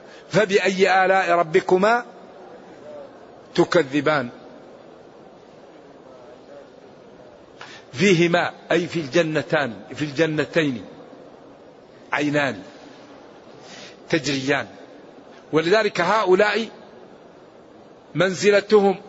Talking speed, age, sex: 45 wpm, 50-69, male